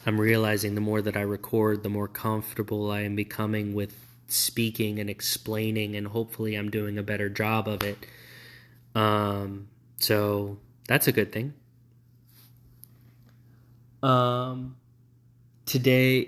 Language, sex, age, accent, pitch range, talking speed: English, male, 20-39, American, 105-120 Hz, 125 wpm